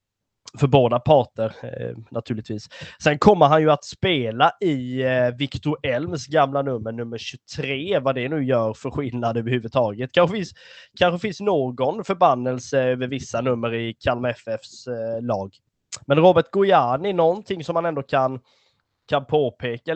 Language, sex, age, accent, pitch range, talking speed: Swedish, male, 20-39, native, 115-145 Hz, 145 wpm